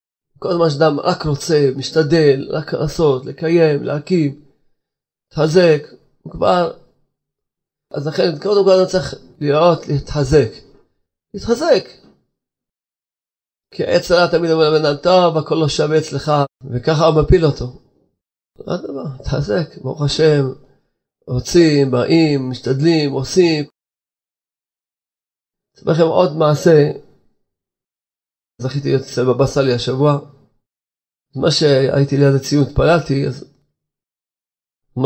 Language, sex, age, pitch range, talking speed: Hebrew, male, 30-49, 135-160 Hz, 100 wpm